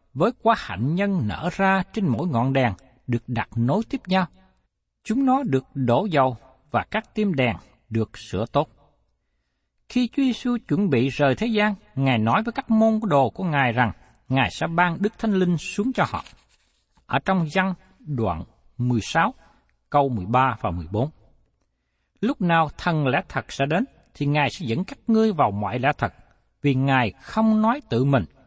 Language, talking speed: Vietnamese, 185 wpm